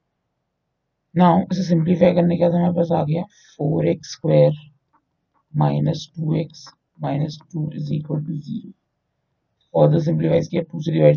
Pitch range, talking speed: 145-170 Hz, 80 wpm